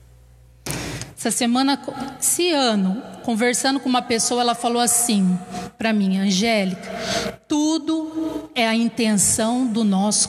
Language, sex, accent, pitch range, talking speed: Portuguese, female, Brazilian, 205-265 Hz, 115 wpm